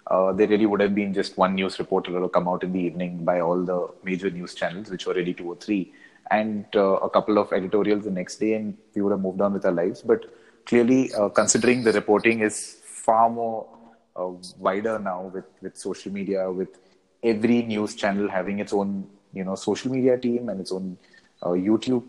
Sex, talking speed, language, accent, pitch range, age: male, 220 wpm, English, Indian, 95-110 Hz, 30-49